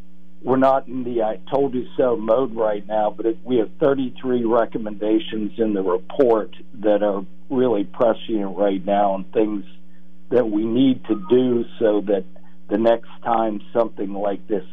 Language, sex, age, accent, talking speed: English, male, 60-79, American, 165 wpm